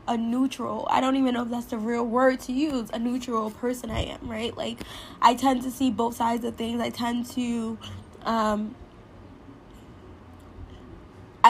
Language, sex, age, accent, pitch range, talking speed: English, female, 10-29, American, 210-240 Hz, 160 wpm